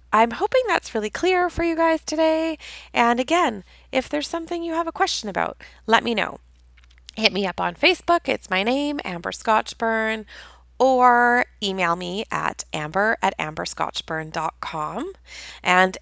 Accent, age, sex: American, 20-39, female